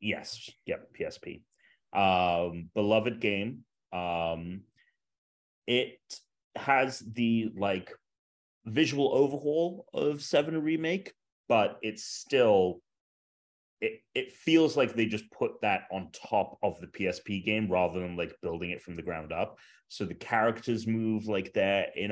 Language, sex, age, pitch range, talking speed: English, male, 30-49, 95-120 Hz, 135 wpm